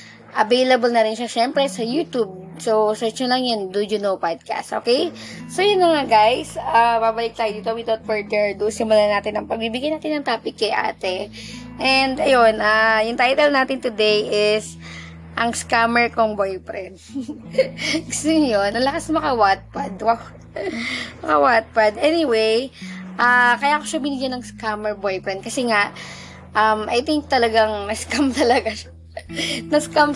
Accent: native